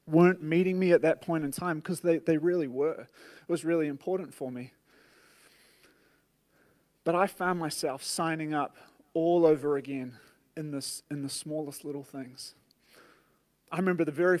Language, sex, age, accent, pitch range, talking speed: English, male, 30-49, Australian, 140-170 Hz, 160 wpm